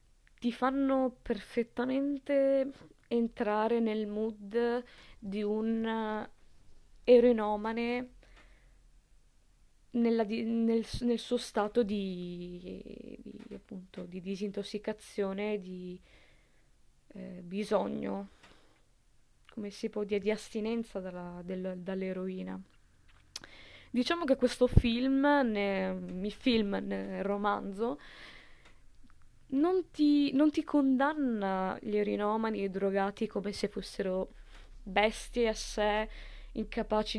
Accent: native